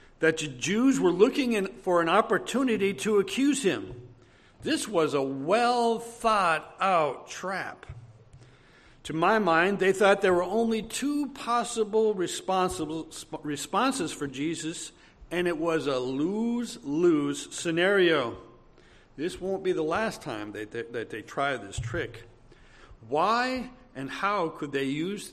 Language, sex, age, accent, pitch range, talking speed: English, male, 60-79, American, 145-200 Hz, 125 wpm